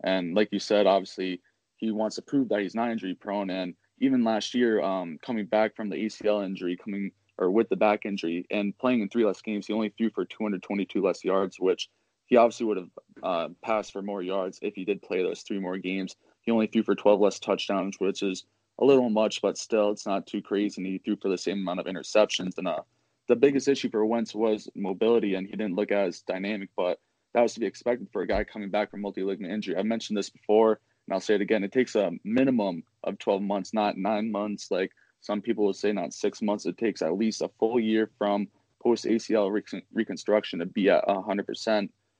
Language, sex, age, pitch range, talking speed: English, male, 20-39, 100-115 Hz, 230 wpm